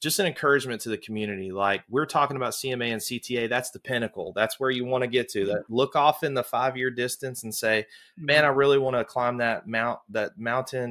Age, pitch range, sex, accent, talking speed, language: 30-49, 100-125 Hz, male, American, 235 wpm, English